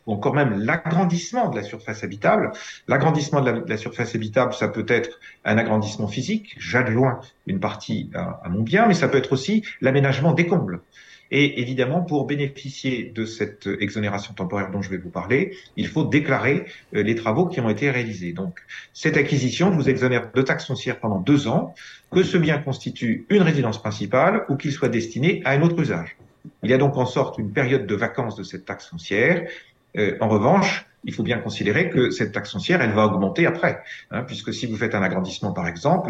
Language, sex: French, male